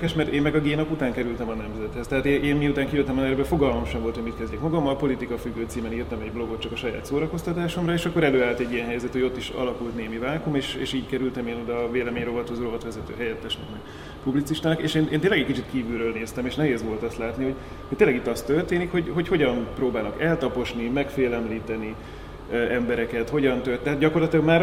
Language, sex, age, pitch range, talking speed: Hungarian, male, 30-49, 120-150 Hz, 210 wpm